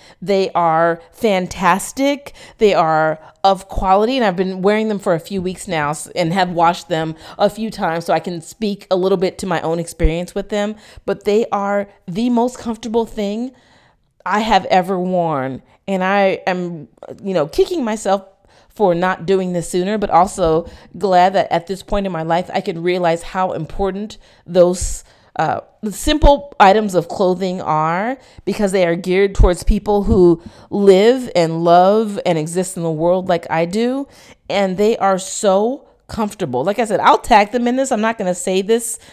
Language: English